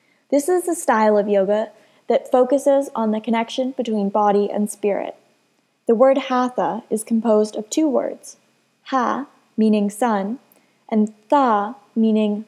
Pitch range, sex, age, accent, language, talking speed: 205-255 Hz, female, 20-39, American, English, 140 wpm